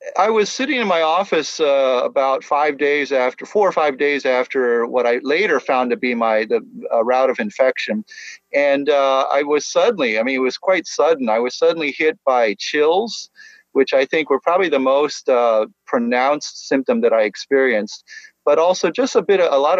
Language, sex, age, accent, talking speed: English, male, 40-59, American, 200 wpm